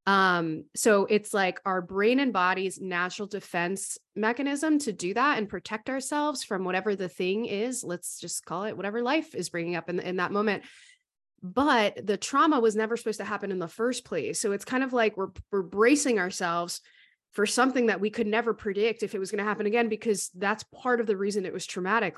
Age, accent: 20-39, American